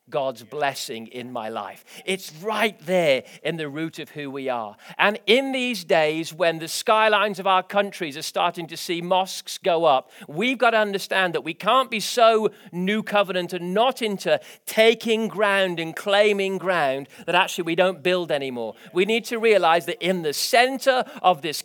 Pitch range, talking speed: 185-240 Hz, 185 wpm